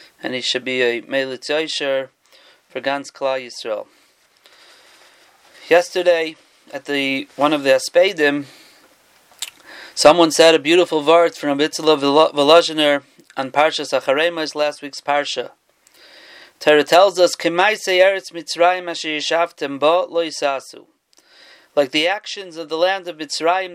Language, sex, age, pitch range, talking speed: English, male, 30-49, 145-190 Hz, 110 wpm